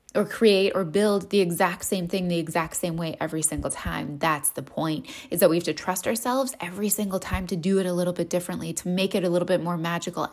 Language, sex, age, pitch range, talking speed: English, female, 20-39, 185-260 Hz, 250 wpm